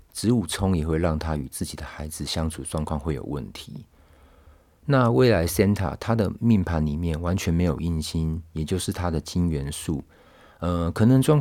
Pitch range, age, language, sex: 75-95 Hz, 50-69, Chinese, male